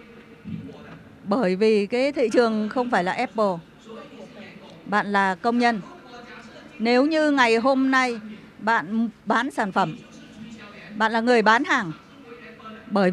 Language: Vietnamese